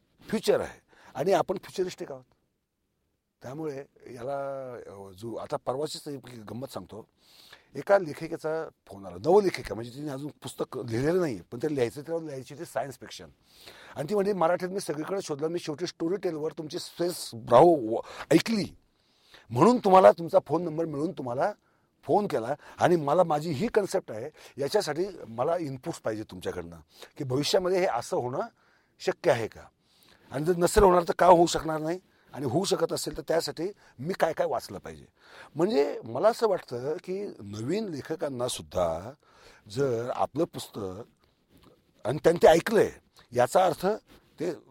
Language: Marathi